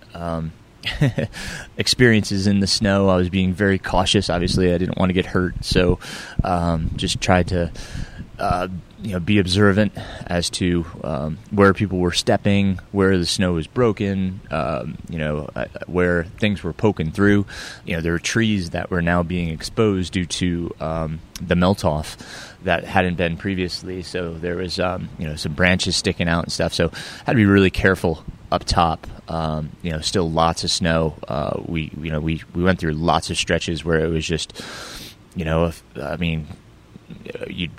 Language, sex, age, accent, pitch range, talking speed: English, male, 20-39, American, 80-100 Hz, 185 wpm